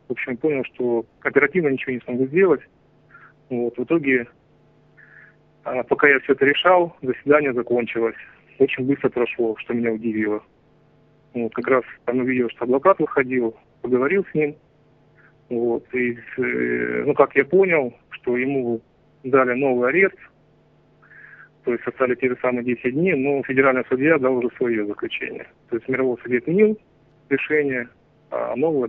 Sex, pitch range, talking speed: male, 120-150 Hz, 145 wpm